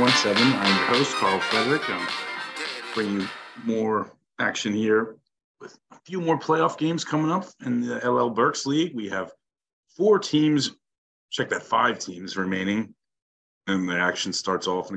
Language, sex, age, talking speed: English, male, 30-49, 155 wpm